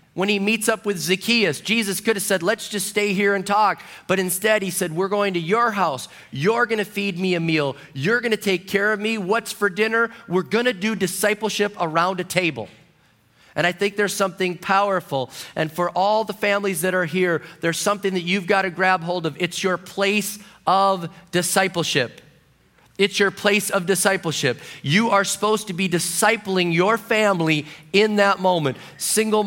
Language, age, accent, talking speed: English, 30-49, American, 195 wpm